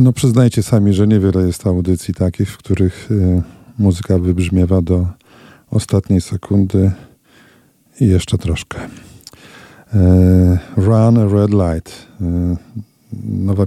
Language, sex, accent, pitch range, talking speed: Polish, male, native, 90-105 Hz, 100 wpm